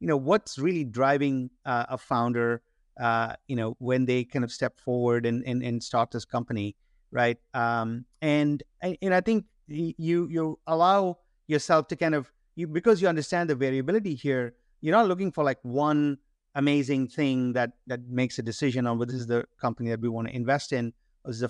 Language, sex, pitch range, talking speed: English, male, 125-155 Hz, 200 wpm